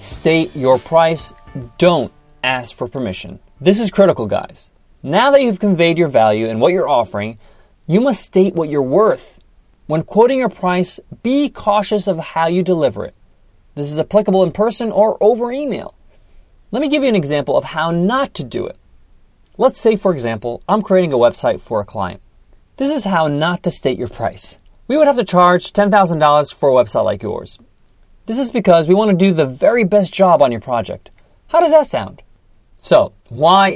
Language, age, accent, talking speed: English, 30-49, American, 190 wpm